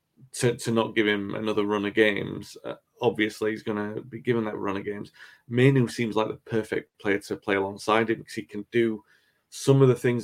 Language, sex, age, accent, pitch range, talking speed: English, male, 30-49, British, 110-125 Hz, 225 wpm